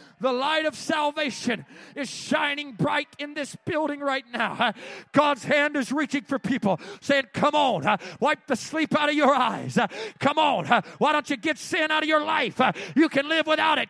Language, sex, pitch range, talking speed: English, male, 250-310 Hz, 190 wpm